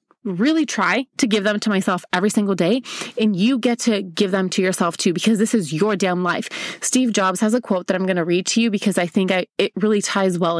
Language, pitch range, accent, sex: English, 200-250 Hz, American, female